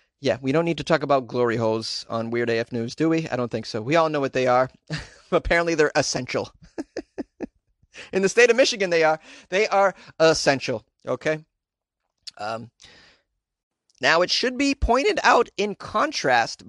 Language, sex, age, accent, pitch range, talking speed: English, male, 30-49, American, 125-170 Hz, 175 wpm